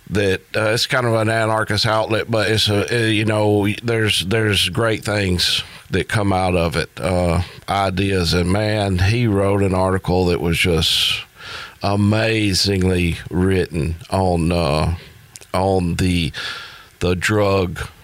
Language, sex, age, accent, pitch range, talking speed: English, male, 50-69, American, 85-105 Hz, 135 wpm